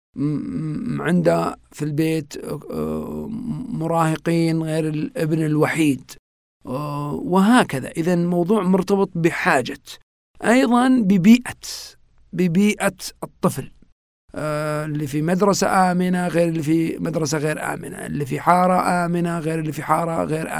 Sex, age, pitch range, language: male, 50-69, 155-190 Hz, Arabic